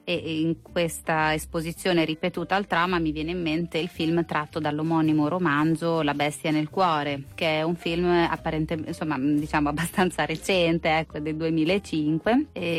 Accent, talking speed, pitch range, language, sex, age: native, 150 wpm, 160-185 Hz, Italian, female, 30-49